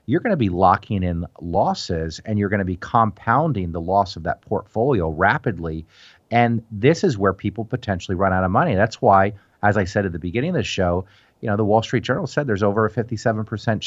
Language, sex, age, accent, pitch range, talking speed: English, male, 40-59, American, 95-120 Hz, 220 wpm